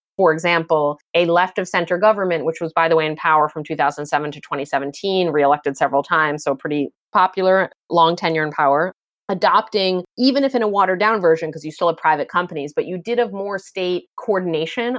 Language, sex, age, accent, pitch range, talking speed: English, female, 30-49, American, 155-195 Hz, 195 wpm